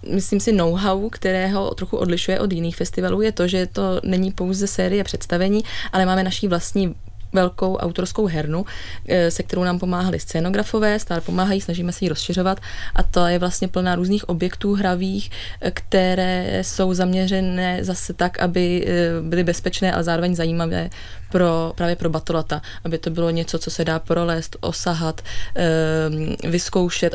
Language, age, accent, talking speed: Czech, 20-39, native, 150 wpm